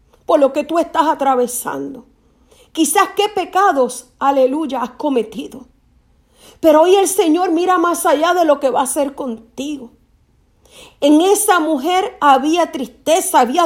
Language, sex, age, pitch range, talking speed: Spanish, female, 40-59, 300-410 Hz, 140 wpm